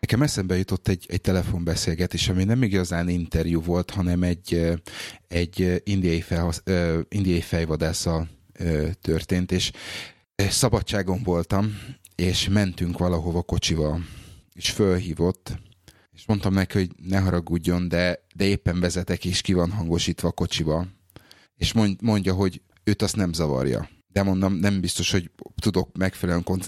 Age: 30-49